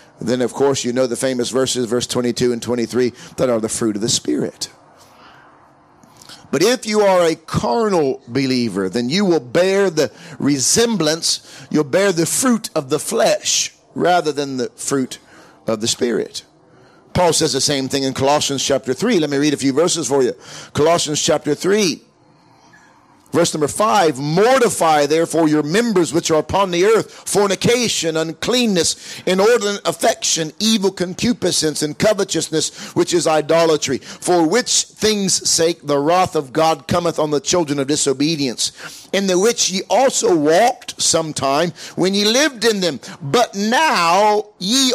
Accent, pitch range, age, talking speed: American, 145-205 Hz, 50-69, 160 wpm